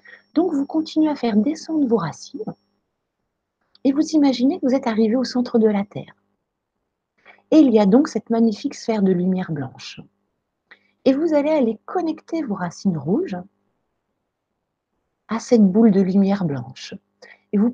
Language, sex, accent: French, female, French